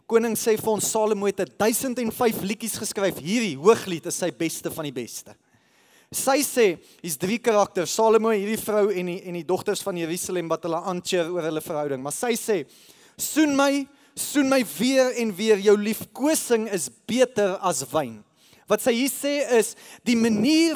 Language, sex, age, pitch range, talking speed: English, male, 20-39, 175-230 Hz, 185 wpm